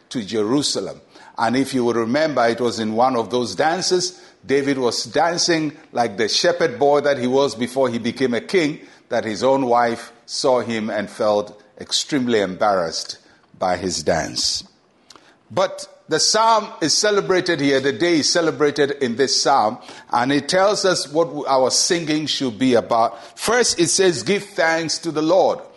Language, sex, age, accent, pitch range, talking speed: English, male, 50-69, Nigerian, 130-180 Hz, 170 wpm